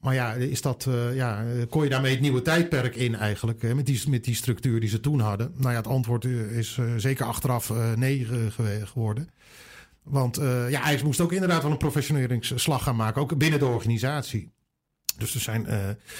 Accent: Dutch